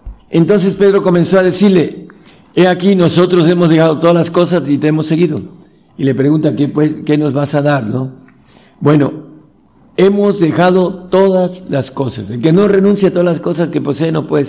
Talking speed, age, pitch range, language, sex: 190 wpm, 60-79, 145-180 Hz, Spanish, male